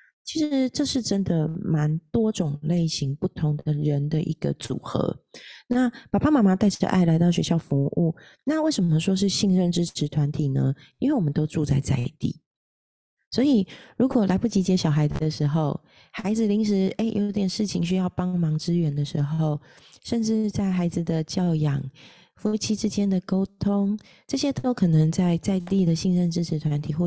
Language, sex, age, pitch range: Chinese, female, 30-49, 155-195 Hz